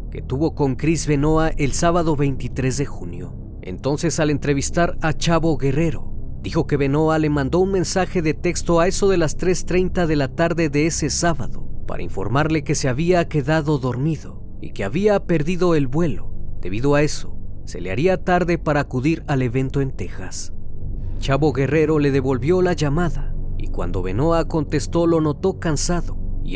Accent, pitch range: Mexican, 115-165 Hz